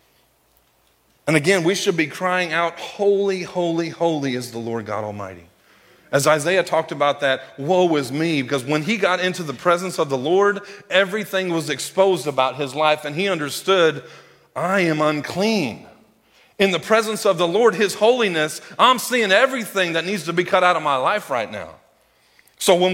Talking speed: 180 wpm